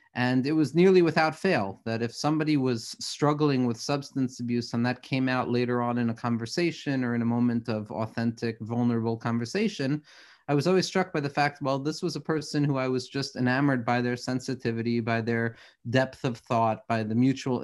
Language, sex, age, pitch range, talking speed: English, male, 30-49, 120-145 Hz, 200 wpm